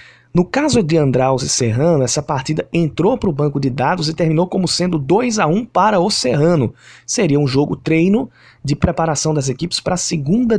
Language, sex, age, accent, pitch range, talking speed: Portuguese, male, 20-39, Brazilian, 130-180 Hz, 185 wpm